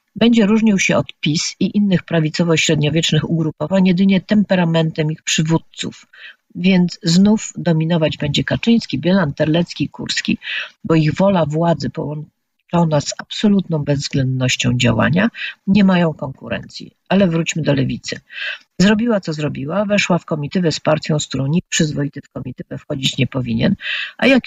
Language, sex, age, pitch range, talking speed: Polish, female, 50-69, 155-200 Hz, 140 wpm